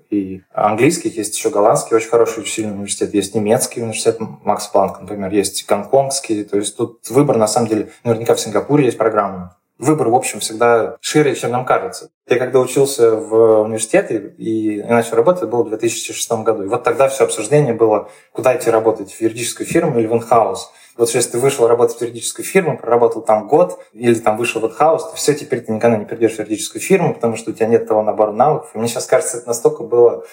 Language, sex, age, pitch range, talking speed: Russian, male, 20-39, 110-130 Hz, 210 wpm